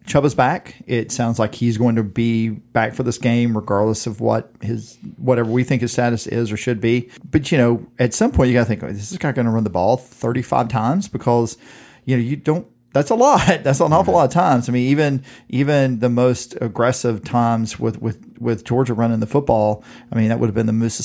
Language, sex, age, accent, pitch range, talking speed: English, male, 40-59, American, 110-125 Hz, 240 wpm